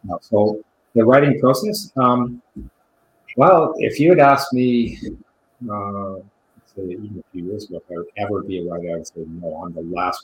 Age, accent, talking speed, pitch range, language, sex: 50-69, American, 190 wpm, 90-115 Hz, English, male